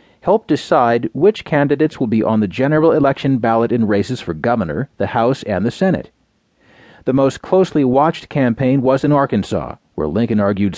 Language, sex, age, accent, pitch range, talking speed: English, male, 40-59, American, 115-145 Hz, 175 wpm